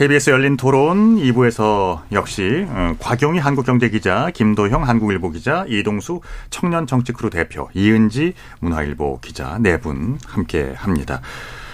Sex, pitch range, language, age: male, 90-140 Hz, Korean, 40-59